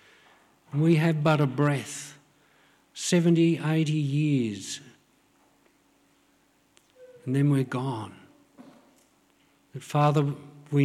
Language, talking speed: English, 85 wpm